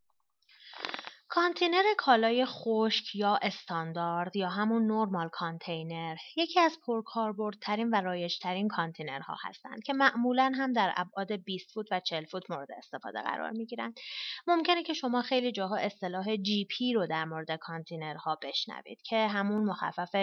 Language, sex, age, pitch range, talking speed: Persian, female, 30-49, 180-240 Hz, 135 wpm